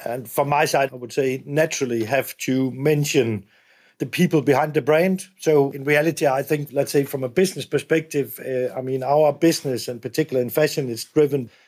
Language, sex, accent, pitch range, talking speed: English, male, Danish, 135-160 Hz, 195 wpm